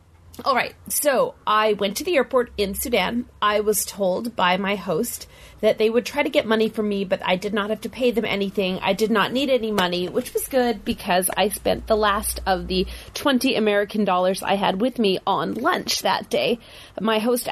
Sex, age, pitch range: female, 30-49, 195-245 Hz